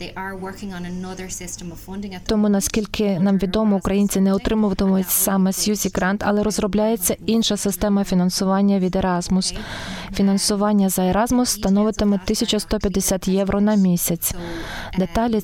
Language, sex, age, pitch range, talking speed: Ukrainian, female, 20-39, 190-210 Hz, 100 wpm